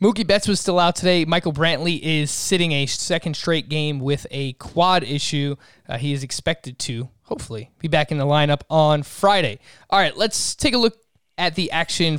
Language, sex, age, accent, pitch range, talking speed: English, male, 20-39, American, 140-175 Hz, 195 wpm